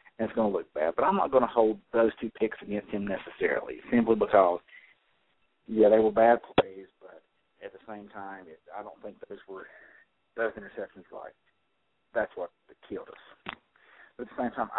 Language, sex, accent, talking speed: English, male, American, 195 wpm